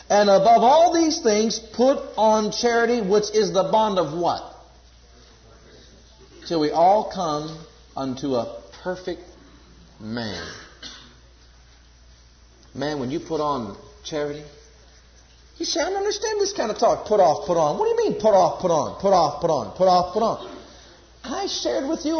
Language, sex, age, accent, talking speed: English, male, 50-69, American, 165 wpm